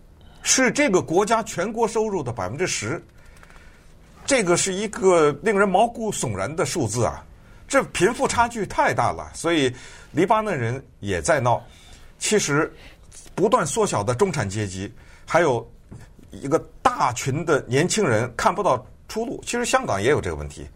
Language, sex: Chinese, male